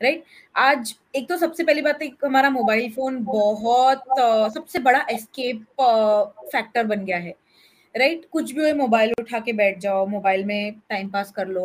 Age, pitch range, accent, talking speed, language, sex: 20-39, 215-280 Hz, native, 185 wpm, Hindi, female